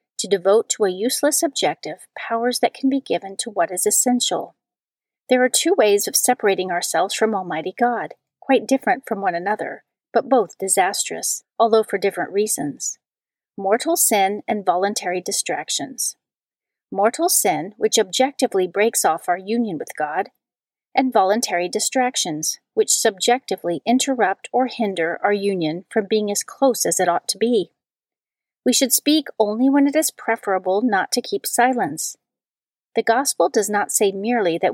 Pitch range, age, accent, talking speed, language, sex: 195-255 Hz, 40-59, American, 155 wpm, English, female